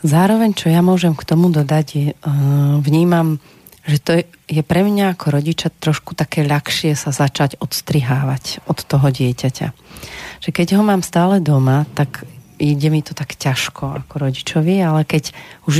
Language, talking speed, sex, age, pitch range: Slovak, 155 wpm, female, 30-49, 140-165 Hz